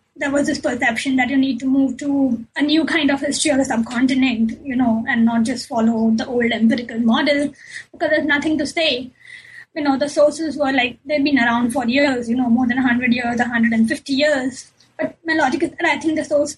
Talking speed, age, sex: 230 wpm, 20-39, female